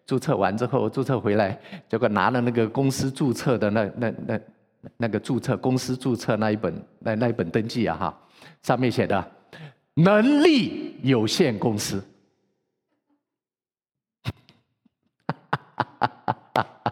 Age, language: 50-69, Chinese